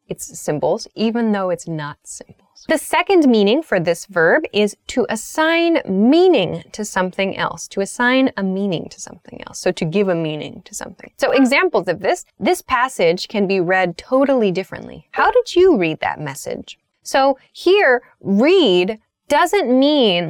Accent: American